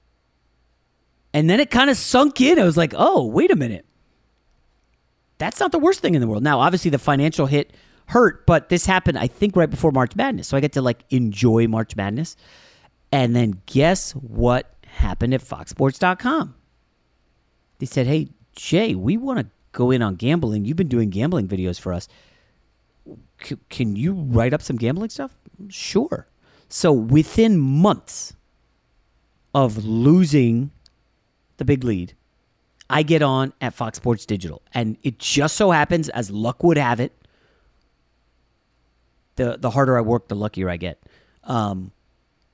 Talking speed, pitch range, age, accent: 160 wpm, 110-165 Hz, 40-59, American